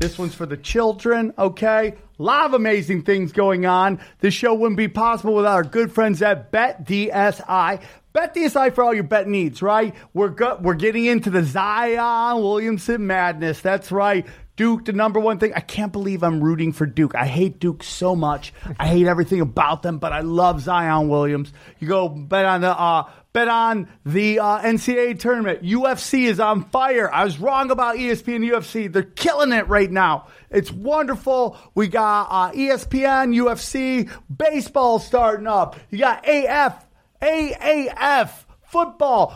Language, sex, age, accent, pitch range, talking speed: English, male, 30-49, American, 180-240 Hz, 170 wpm